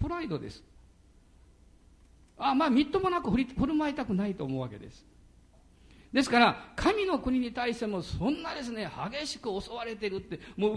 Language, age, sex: Japanese, 50-69, male